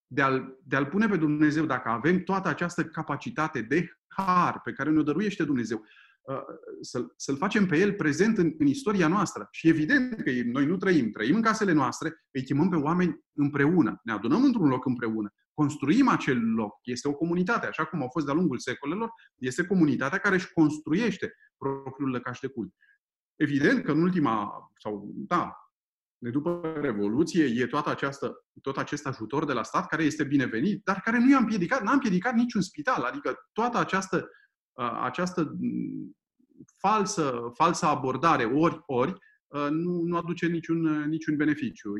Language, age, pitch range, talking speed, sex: Romanian, 30-49, 135-180 Hz, 165 wpm, male